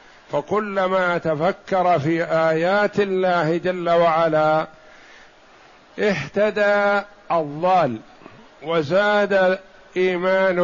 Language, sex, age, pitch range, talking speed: Arabic, male, 50-69, 165-195 Hz, 60 wpm